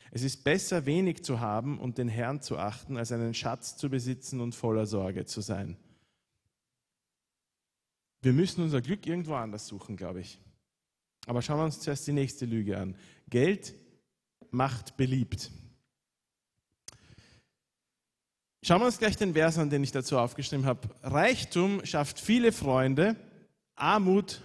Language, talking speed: German, 145 wpm